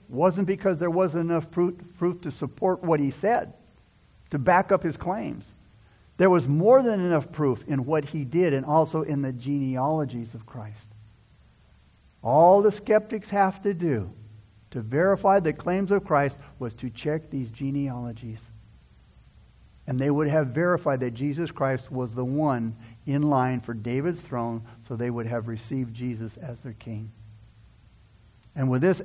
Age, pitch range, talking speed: 60-79, 125-195 Hz, 160 wpm